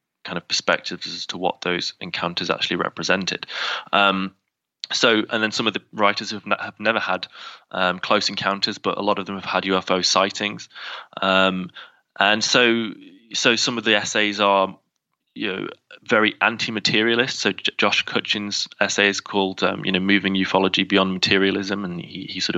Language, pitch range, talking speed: English, 90-100 Hz, 175 wpm